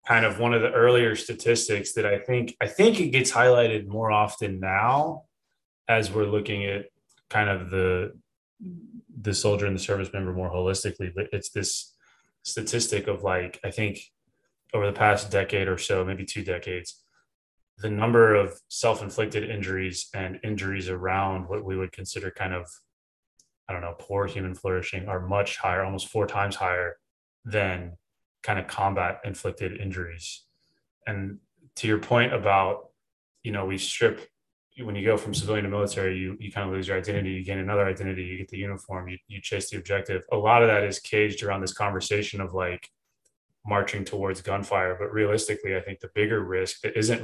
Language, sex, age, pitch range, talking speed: English, male, 20-39, 95-105 Hz, 180 wpm